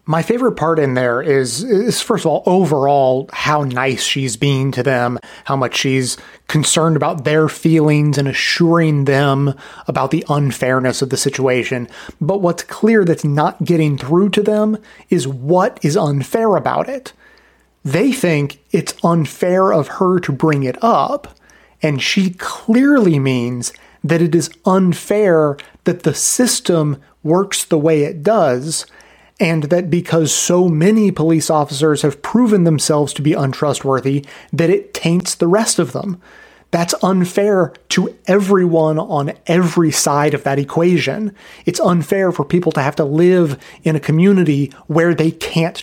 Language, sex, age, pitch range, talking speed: English, male, 30-49, 145-185 Hz, 155 wpm